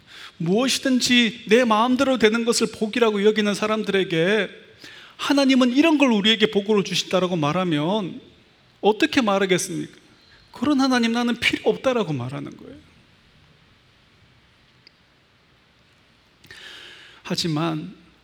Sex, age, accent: male, 30-49, native